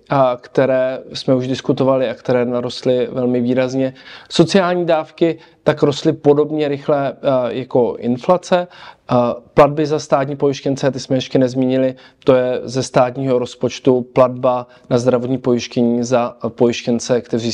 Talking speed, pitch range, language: 135 wpm, 120-140 Hz, Czech